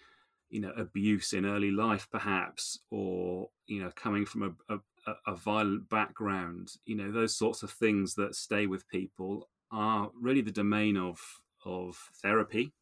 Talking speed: 160 wpm